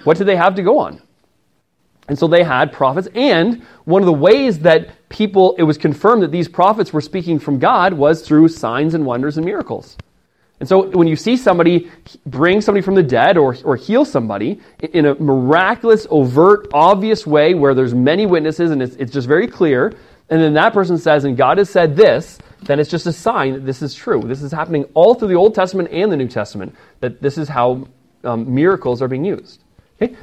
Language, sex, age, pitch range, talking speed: English, male, 30-49, 130-170 Hz, 215 wpm